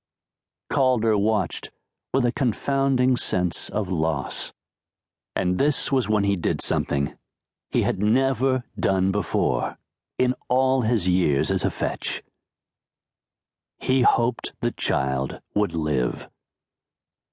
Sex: male